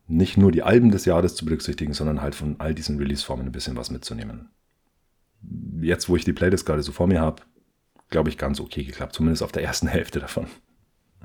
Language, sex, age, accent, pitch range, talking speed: German, male, 30-49, German, 75-90 Hz, 210 wpm